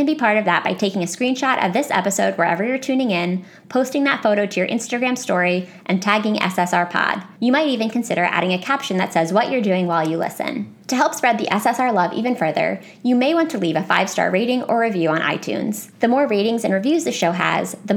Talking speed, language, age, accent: 230 wpm, English, 20-39, American